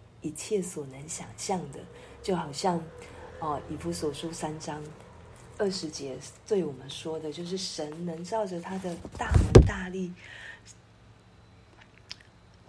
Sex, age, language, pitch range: female, 40-59, Chinese, 140-180 Hz